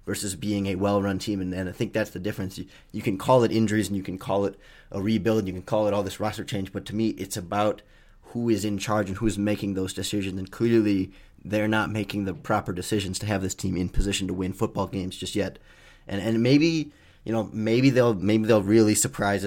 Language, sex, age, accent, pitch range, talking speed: English, male, 20-39, American, 95-110 Hz, 245 wpm